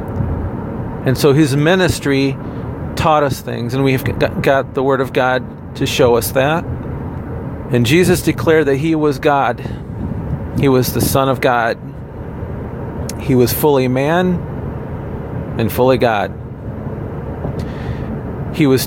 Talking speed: 125 wpm